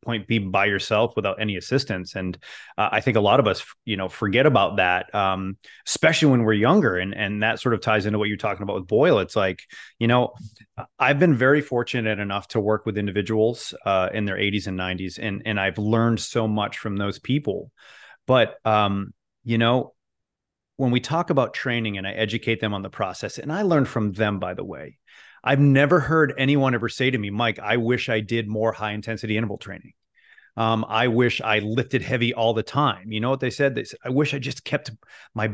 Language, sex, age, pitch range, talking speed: English, male, 30-49, 105-135 Hz, 220 wpm